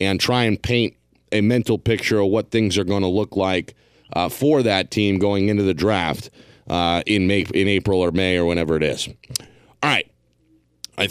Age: 40-59